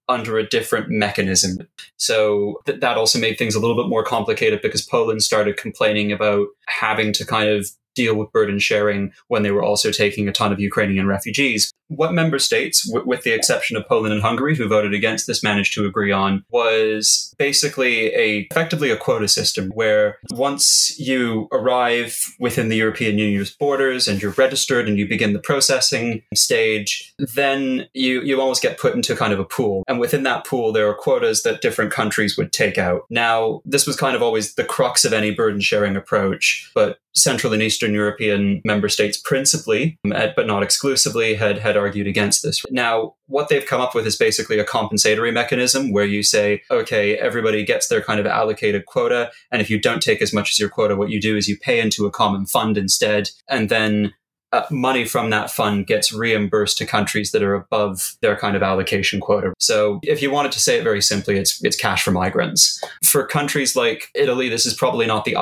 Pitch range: 105-135 Hz